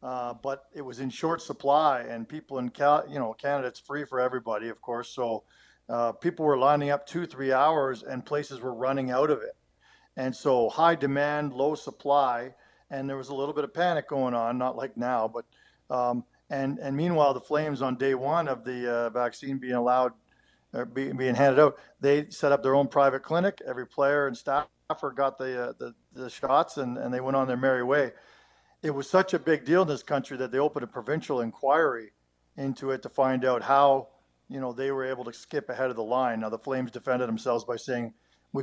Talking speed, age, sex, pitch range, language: 215 wpm, 50-69, male, 125-140 Hz, English